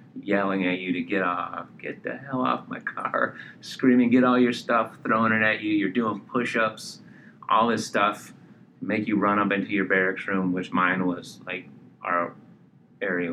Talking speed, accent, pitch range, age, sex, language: 185 wpm, American, 90-110 Hz, 30-49, male, English